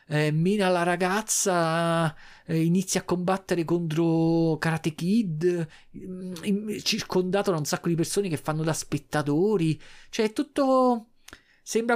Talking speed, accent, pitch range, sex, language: 120 wpm, native, 135-195 Hz, male, Italian